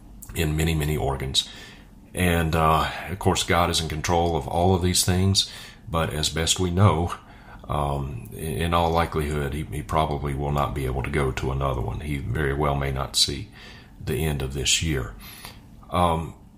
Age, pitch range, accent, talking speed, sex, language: 40-59, 75-90 Hz, American, 180 wpm, male, English